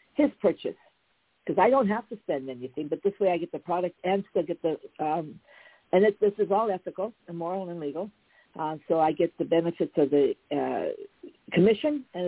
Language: English